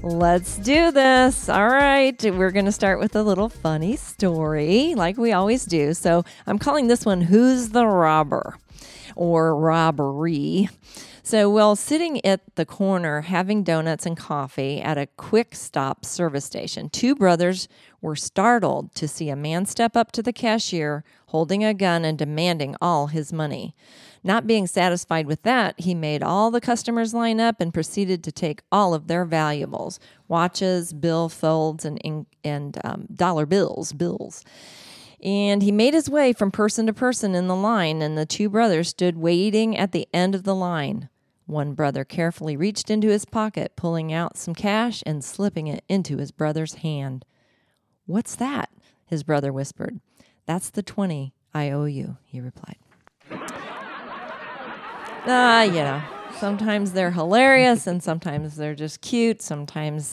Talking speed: 160 wpm